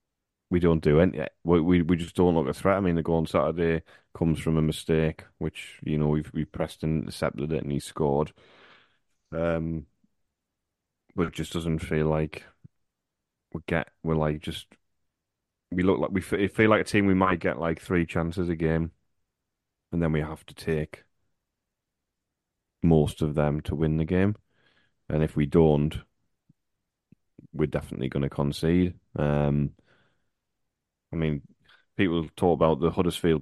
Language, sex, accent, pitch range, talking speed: English, male, British, 75-95 Hz, 170 wpm